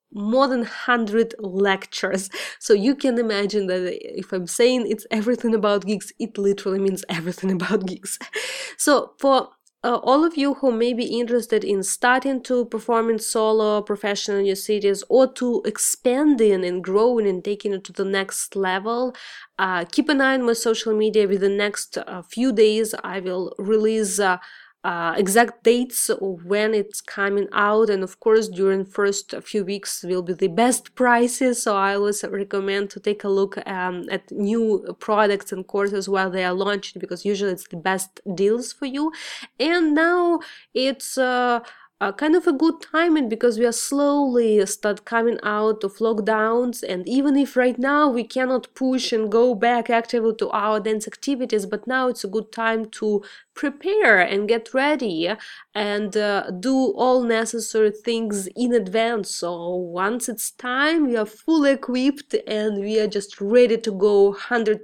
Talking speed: 175 wpm